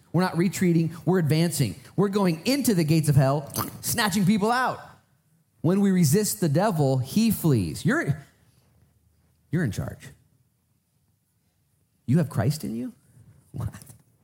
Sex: male